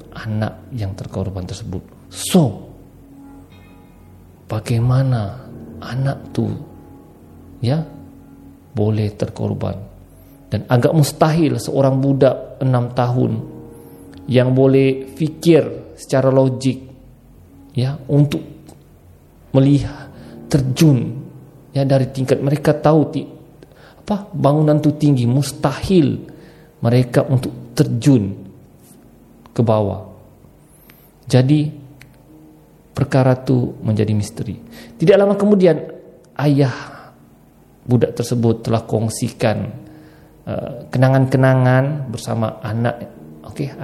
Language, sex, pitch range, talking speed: Malay, male, 105-140 Hz, 80 wpm